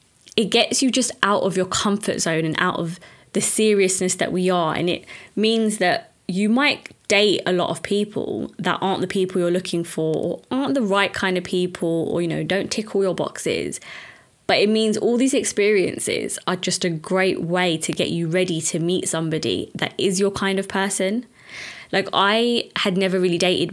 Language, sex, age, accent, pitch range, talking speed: English, female, 20-39, British, 175-215 Hz, 200 wpm